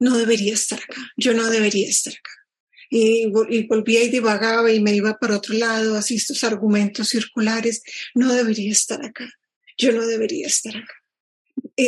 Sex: female